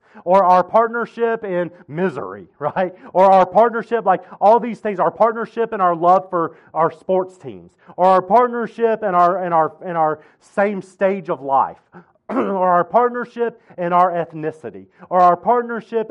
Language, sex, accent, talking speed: English, male, American, 155 wpm